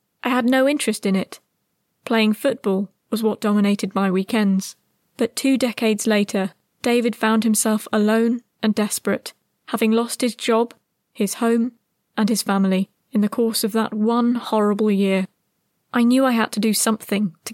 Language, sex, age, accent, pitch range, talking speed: English, female, 20-39, British, 205-235 Hz, 165 wpm